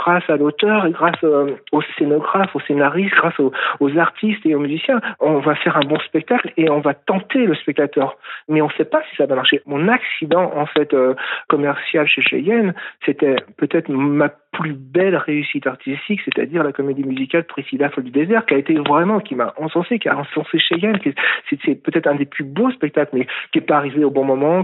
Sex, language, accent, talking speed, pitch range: male, French, French, 210 wpm, 140-175 Hz